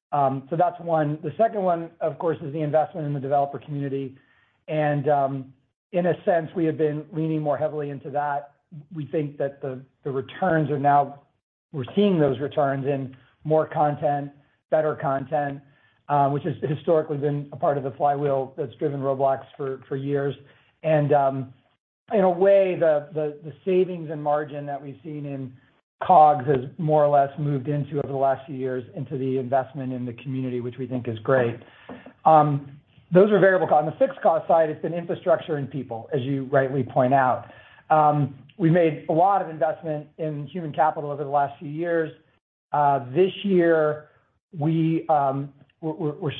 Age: 40-59